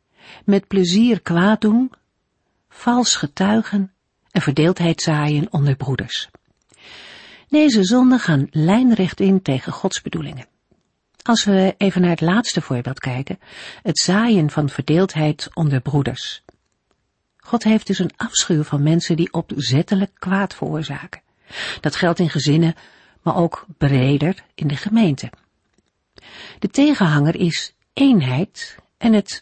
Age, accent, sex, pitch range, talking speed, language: 50-69, Dutch, female, 145-195 Hz, 125 wpm, Dutch